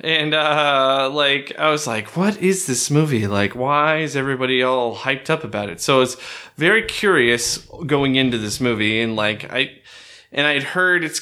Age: 20-39